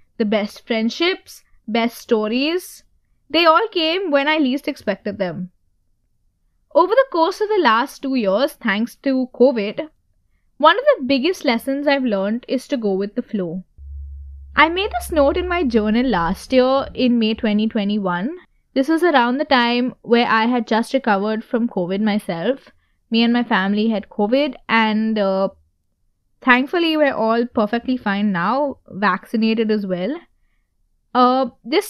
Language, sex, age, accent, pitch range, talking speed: English, female, 20-39, Indian, 210-275 Hz, 150 wpm